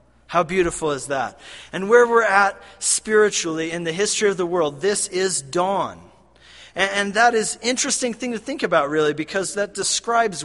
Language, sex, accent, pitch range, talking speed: English, male, American, 155-210 Hz, 185 wpm